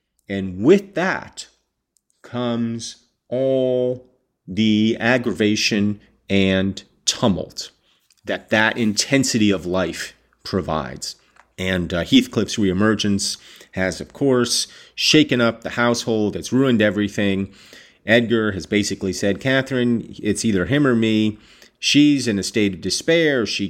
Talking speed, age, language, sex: 115 wpm, 40-59, English, male